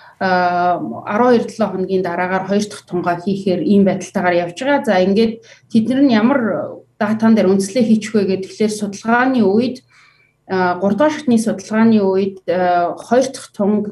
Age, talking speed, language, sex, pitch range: 30-49, 125 wpm, English, female, 180-220 Hz